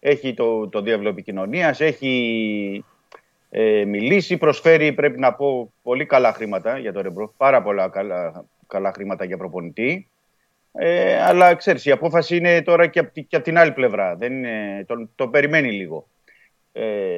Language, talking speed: Greek, 160 wpm